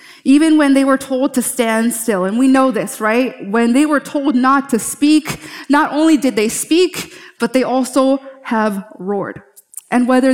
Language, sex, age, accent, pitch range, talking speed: English, female, 20-39, American, 205-265 Hz, 185 wpm